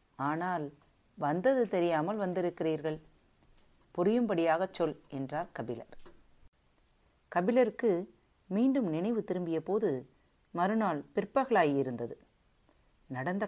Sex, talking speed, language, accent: female, 70 wpm, Tamil, native